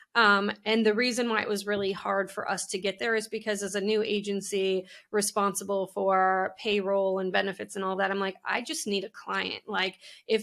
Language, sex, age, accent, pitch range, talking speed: English, female, 20-39, American, 195-220 Hz, 215 wpm